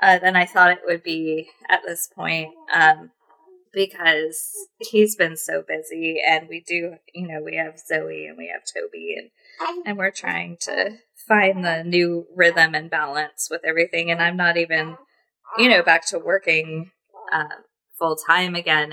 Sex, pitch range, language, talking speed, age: female, 165-230 Hz, English, 170 wpm, 20-39